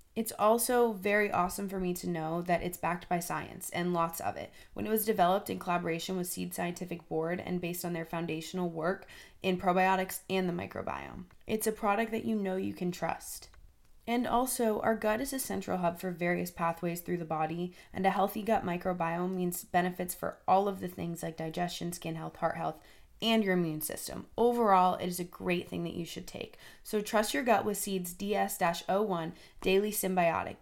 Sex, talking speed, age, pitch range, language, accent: female, 200 wpm, 20-39, 170-200 Hz, English, American